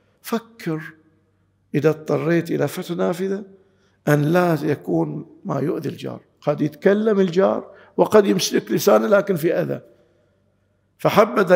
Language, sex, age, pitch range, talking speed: Arabic, male, 50-69, 150-220 Hz, 115 wpm